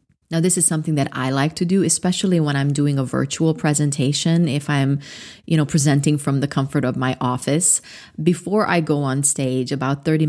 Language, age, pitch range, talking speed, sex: English, 30-49, 150-195 Hz, 200 wpm, female